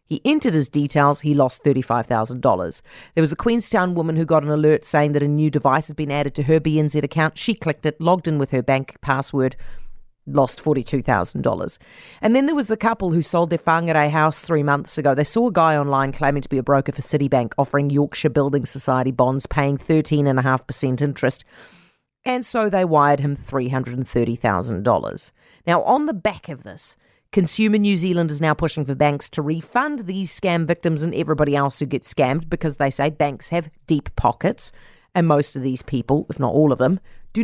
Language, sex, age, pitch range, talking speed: English, female, 40-59, 135-175 Hz, 195 wpm